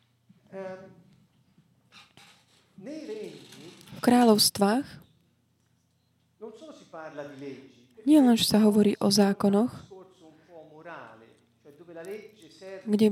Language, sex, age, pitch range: Slovak, female, 30-49, 190-225 Hz